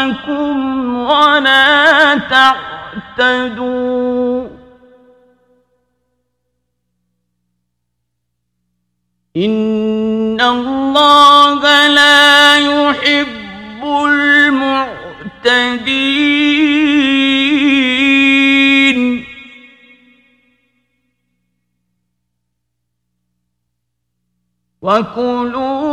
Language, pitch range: Persian, 220-290 Hz